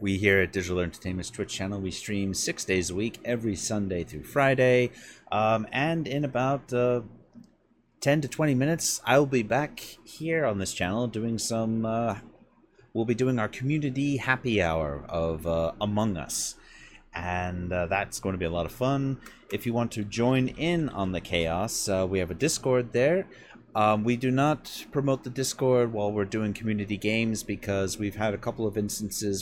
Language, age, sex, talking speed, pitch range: English, 30-49, male, 185 wpm, 90-120 Hz